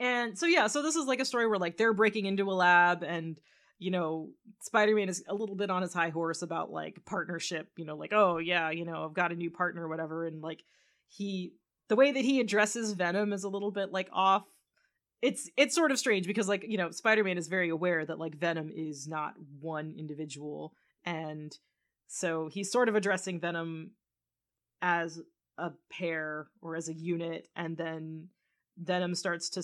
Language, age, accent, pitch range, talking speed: English, 30-49, American, 165-200 Hz, 200 wpm